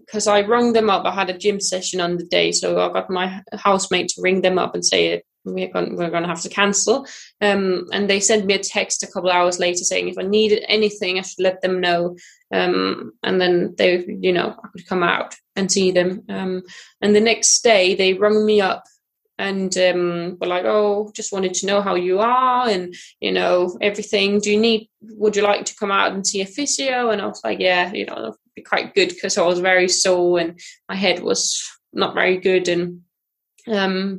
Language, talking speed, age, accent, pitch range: English, 225 wpm, 20-39, British, 180-205 Hz